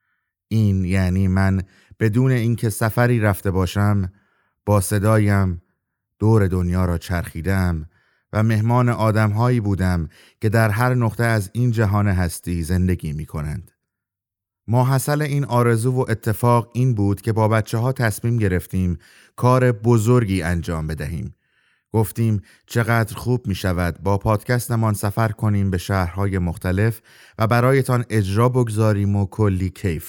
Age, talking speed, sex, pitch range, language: 30-49, 130 wpm, male, 95-115 Hz, Persian